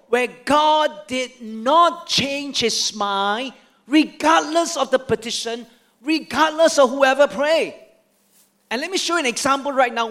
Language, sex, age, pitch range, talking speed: English, male, 40-59, 210-285 Hz, 140 wpm